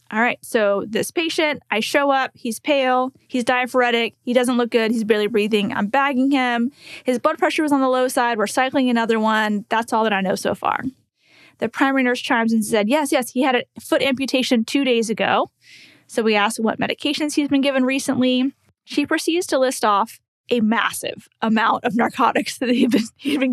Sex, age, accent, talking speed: female, 10-29, American, 200 wpm